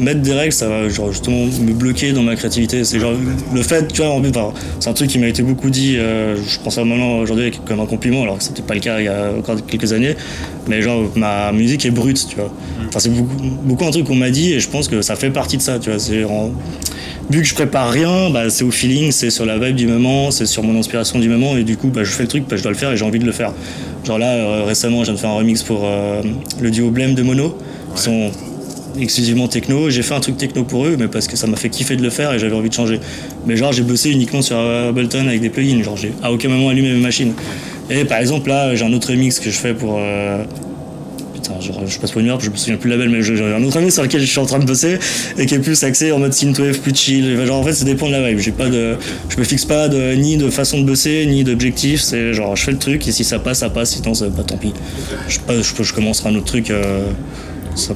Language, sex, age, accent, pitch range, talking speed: French, male, 20-39, French, 110-135 Hz, 285 wpm